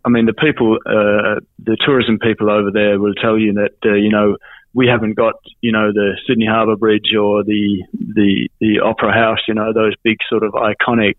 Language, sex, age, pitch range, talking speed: English, male, 20-39, 100-115 Hz, 210 wpm